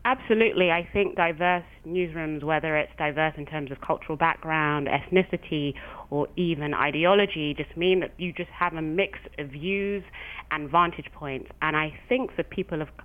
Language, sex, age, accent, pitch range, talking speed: English, female, 30-49, British, 150-185 Hz, 165 wpm